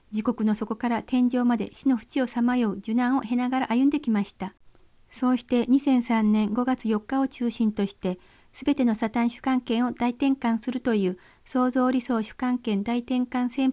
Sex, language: female, Japanese